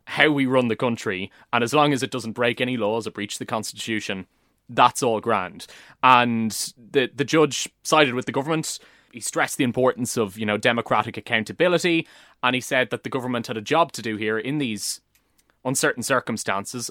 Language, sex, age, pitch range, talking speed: English, male, 20-39, 110-145 Hz, 190 wpm